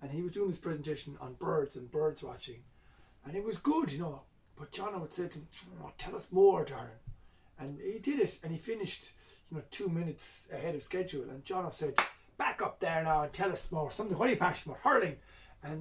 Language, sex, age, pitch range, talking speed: English, male, 30-49, 140-195 Hz, 230 wpm